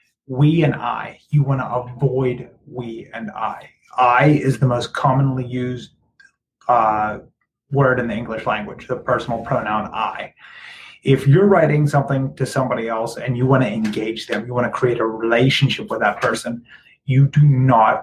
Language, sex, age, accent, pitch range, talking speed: English, male, 30-49, American, 120-140 Hz, 170 wpm